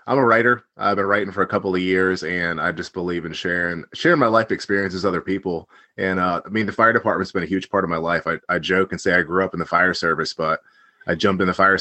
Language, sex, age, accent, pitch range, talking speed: English, male, 30-49, American, 90-105 Hz, 285 wpm